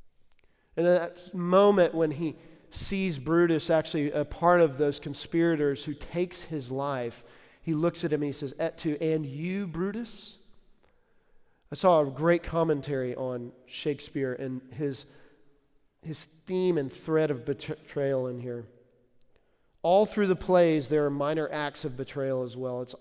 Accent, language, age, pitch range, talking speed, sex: American, English, 40-59, 135-170 Hz, 155 wpm, male